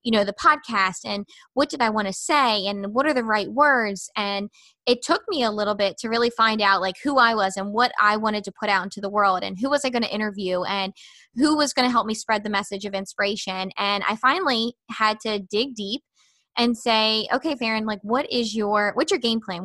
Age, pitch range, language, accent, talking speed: 20-39, 205-245 Hz, English, American, 245 wpm